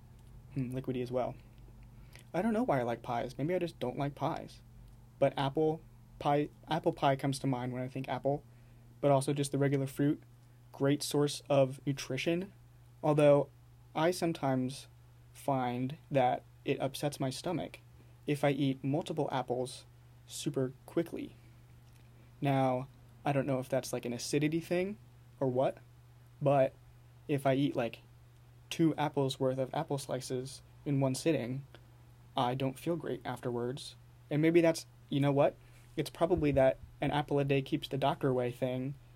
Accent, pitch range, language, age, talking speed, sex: American, 120-145 Hz, English, 20-39, 160 wpm, male